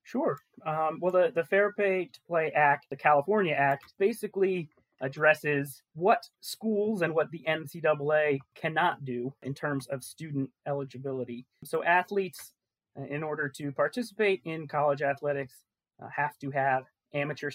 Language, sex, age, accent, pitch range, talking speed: English, male, 30-49, American, 140-165 Hz, 145 wpm